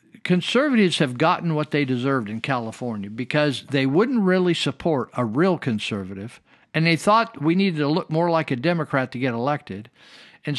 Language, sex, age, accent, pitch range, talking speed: English, male, 50-69, American, 130-170 Hz, 175 wpm